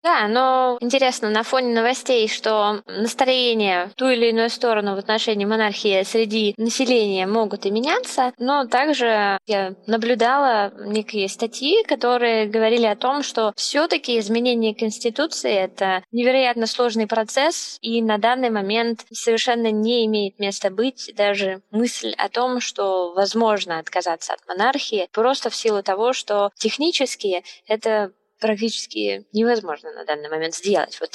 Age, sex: 20-39, female